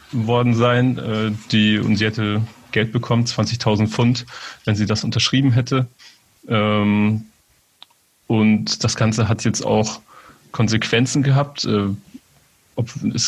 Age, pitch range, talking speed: 30-49, 105-115 Hz, 110 wpm